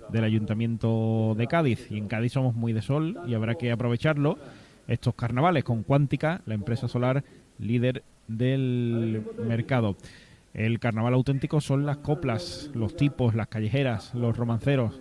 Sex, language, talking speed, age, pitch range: male, Spanish, 150 wpm, 20-39, 115-135 Hz